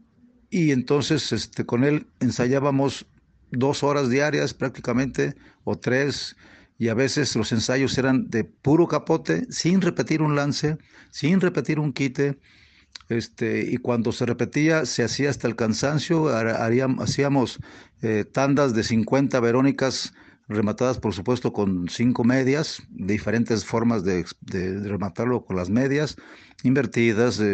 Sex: male